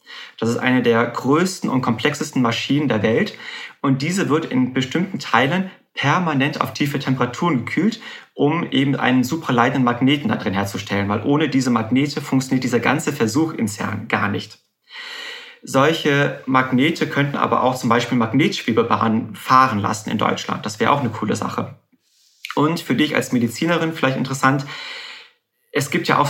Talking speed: 160 wpm